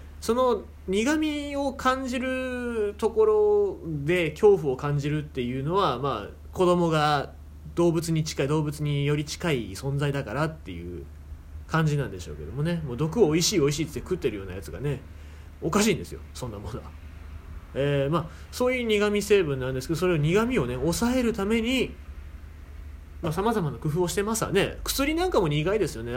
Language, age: Japanese, 30-49